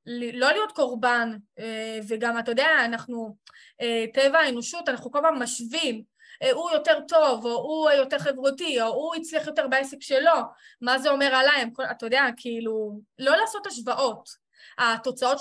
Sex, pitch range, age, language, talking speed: female, 240-315 Hz, 20-39, Hebrew, 140 wpm